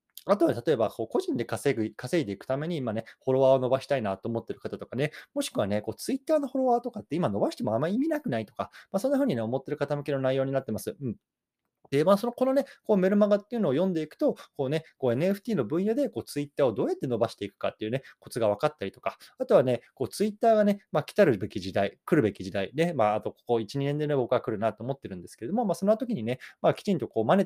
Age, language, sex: 20-39, Japanese, male